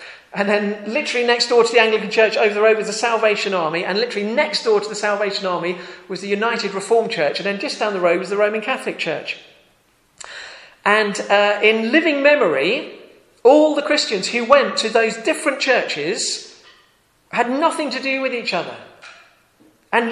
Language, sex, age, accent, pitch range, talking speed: English, male, 40-59, British, 210-280 Hz, 185 wpm